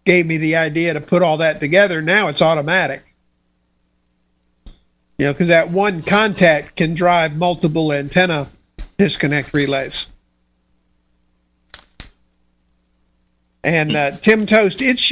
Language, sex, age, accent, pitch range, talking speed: English, male, 50-69, American, 150-190 Hz, 115 wpm